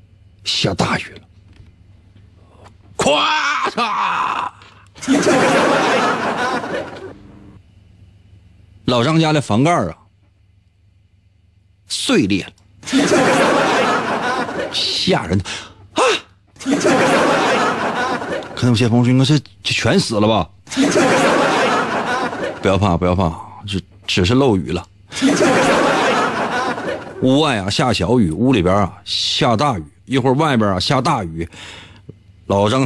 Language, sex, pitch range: Chinese, male, 95-120 Hz